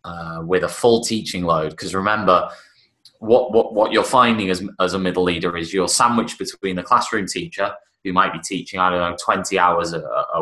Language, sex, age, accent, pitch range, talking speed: English, male, 20-39, British, 90-105 Hz, 205 wpm